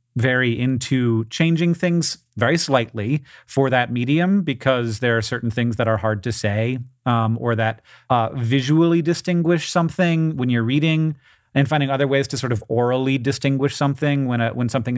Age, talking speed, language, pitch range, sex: 30-49, 170 wpm, English, 115-150 Hz, male